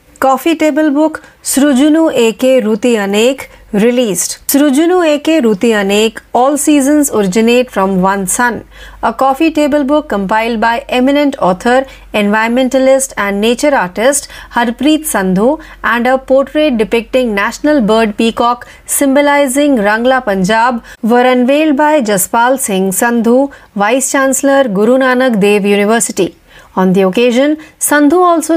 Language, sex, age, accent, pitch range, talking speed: Marathi, female, 40-59, native, 215-285 Hz, 80 wpm